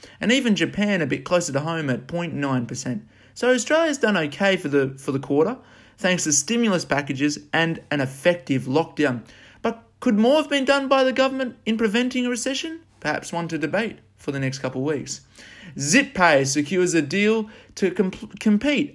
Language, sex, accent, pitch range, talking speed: English, male, Australian, 140-210 Hz, 180 wpm